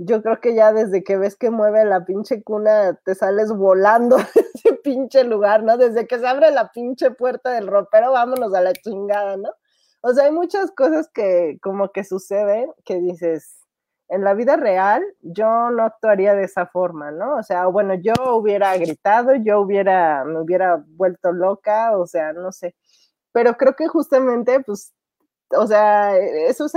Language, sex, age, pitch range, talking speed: Spanish, female, 30-49, 190-240 Hz, 180 wpm